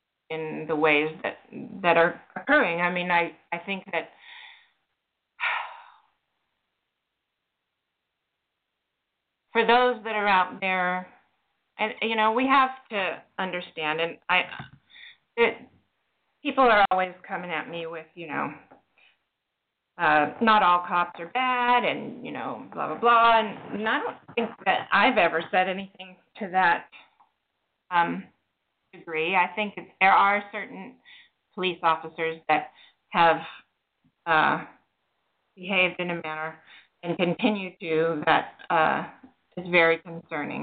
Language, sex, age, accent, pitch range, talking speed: English, female, 30-49, American, 165-225 Hz, 125 wpm